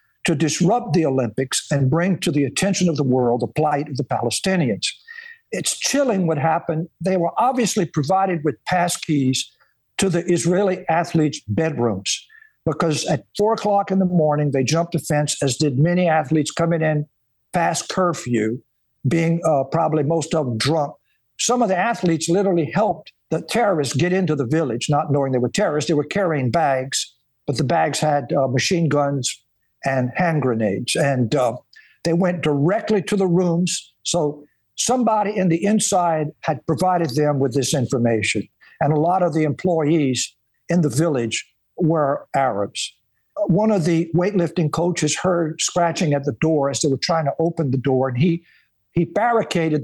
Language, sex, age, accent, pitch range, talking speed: English, male, 60-79, American, 145-180 Hz, 170 wpm